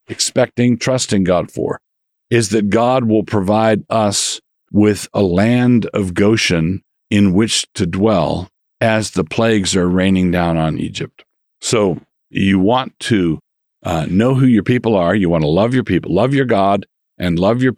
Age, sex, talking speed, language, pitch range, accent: 50-69, male, 165 wpm, English, 90-115 Hz, American